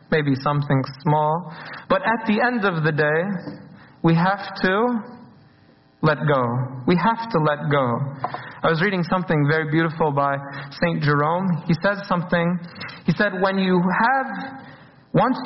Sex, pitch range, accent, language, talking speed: male, 145-190 Hz, American, English, 150 wpm